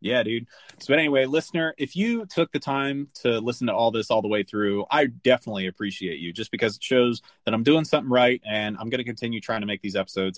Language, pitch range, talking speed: English, 115-160 Hz, 255 wpm